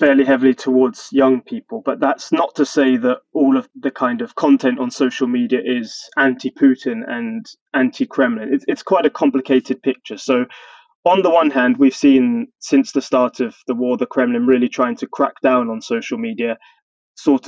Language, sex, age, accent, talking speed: English, male, 20-39, British, 190 wpm